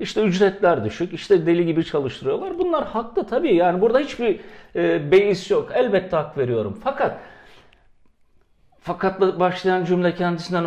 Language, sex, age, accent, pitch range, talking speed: Turkish, male, 50-69, native, 170-230 Hz, 130 wpm